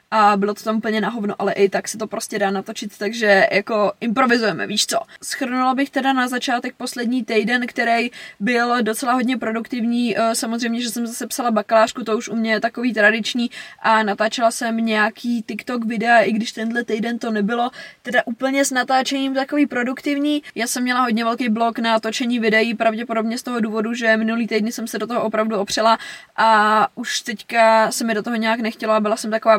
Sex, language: female, Czech